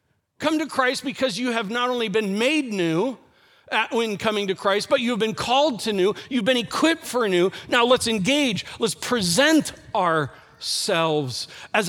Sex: male